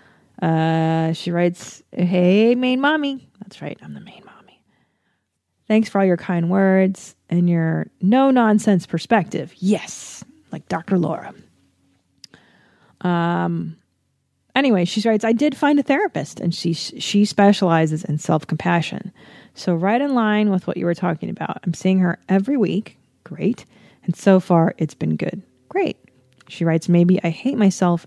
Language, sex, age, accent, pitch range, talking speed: English, female, 30-49, American, 165-210 Hz, 150 wpm